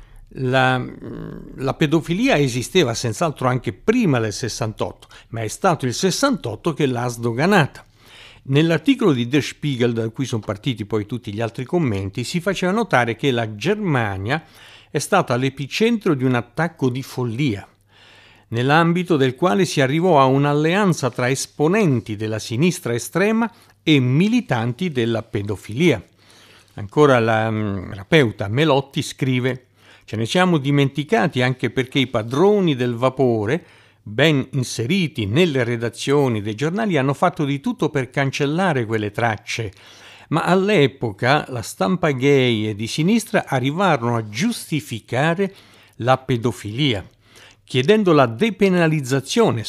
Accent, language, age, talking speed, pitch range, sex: native, Italian, 50-69, 130 wpm, 115-160 Hz, male